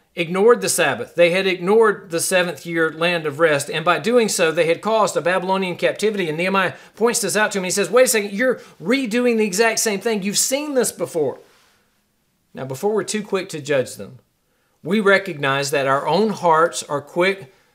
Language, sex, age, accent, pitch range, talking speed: English, male, 40-59, American, 170-220 Hz, 205 wpm